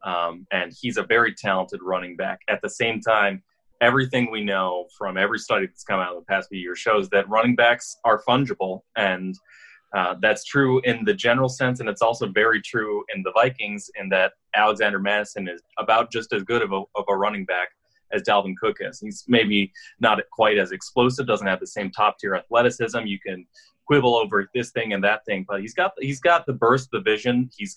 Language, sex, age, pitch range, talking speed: English, male, 30-49, 95-125 Hz, 215 wpm